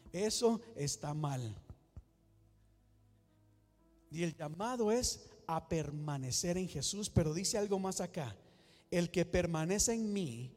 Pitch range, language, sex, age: 120-190 Hz, Spanish, male, 50-69